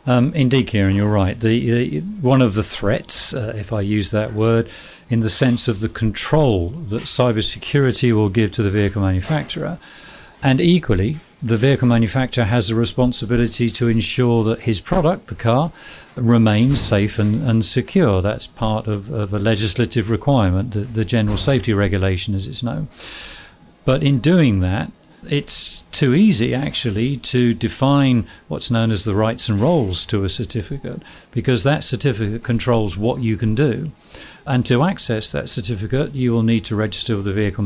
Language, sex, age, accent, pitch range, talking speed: English, male, 50-69, British, 110-130 Hz, 170 wpm